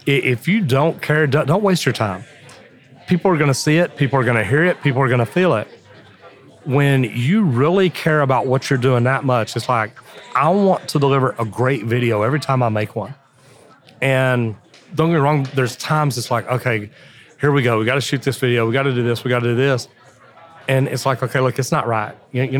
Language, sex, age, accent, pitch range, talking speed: English, male, 30-49, American, 120-150 Hz, 235 wpm